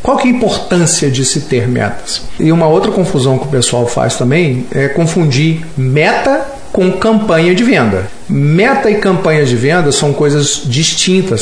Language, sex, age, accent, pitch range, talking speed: Portuguese, male, 50-69, Brazilian, 130-180 Hz, 175 wpm